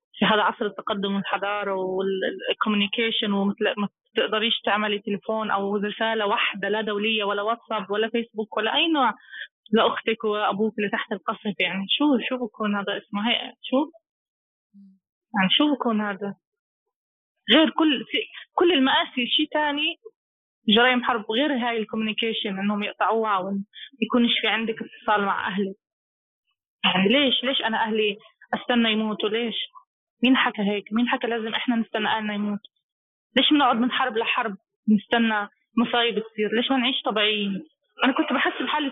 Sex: female